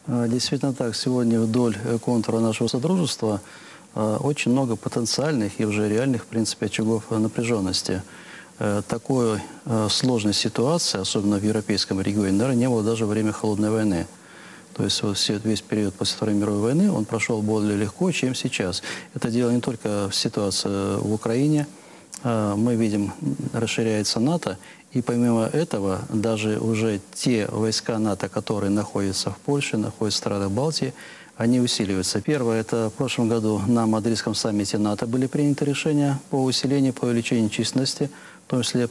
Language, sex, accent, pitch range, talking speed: Russian, male, native, 105-125 Hz, 150 wpm